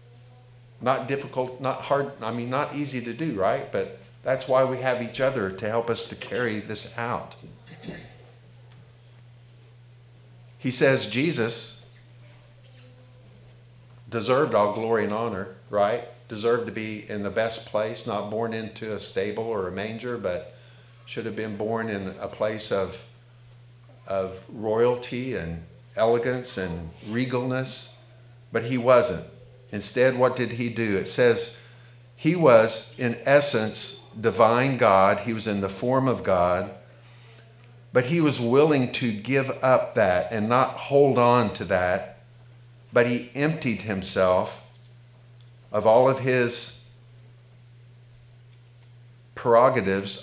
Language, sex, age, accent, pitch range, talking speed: English, male, 50-69, American, 110-125 Hz, 130 wpm